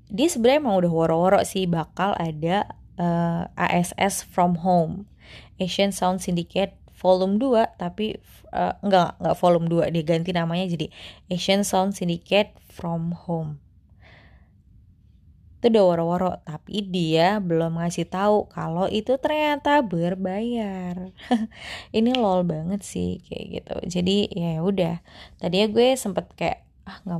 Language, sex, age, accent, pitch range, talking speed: Indonesian, female, 20-39, native, 170-205 Hz, 130 wpm